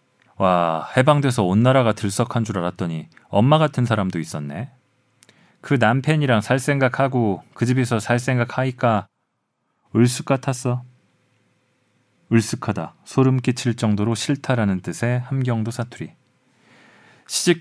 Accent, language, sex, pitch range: native, Korean, male, 110-130 Hz